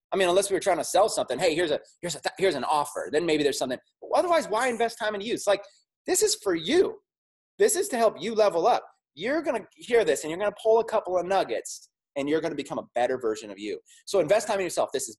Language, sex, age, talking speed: English, male, 30-49, 275 wpm